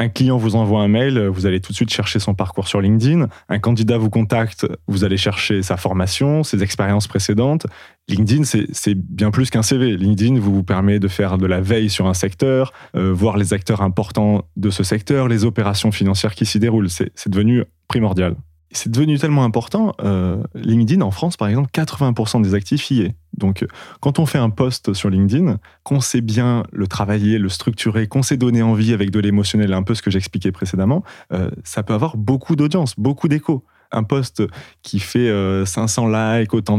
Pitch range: 100-125 Hz